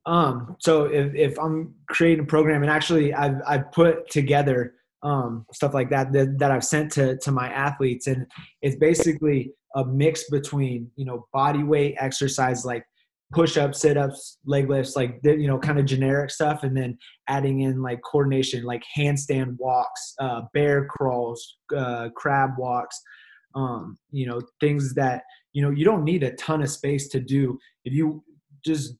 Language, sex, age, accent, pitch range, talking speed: English, male, 20-39, American, 130-150 Hz, 170 wpm